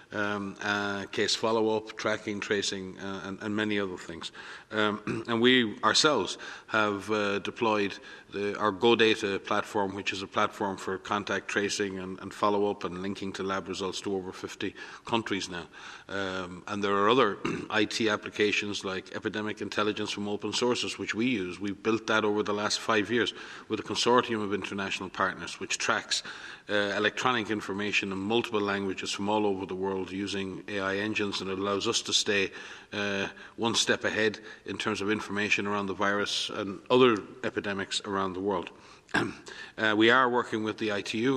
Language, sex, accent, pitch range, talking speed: English, male, Irish, 100-110 Hz, 175 wpm